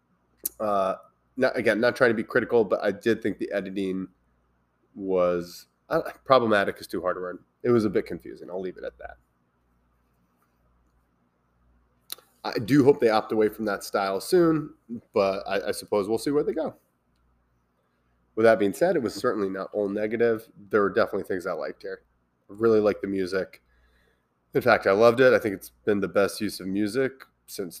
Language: English